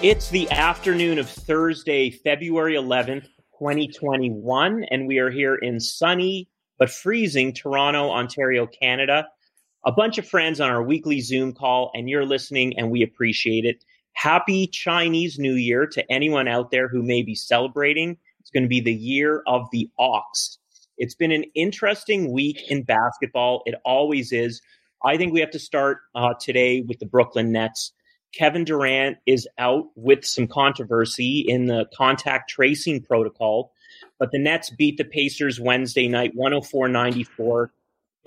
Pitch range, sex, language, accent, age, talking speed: 125-150 Hz, male, English, American, 30-49, 155 wpm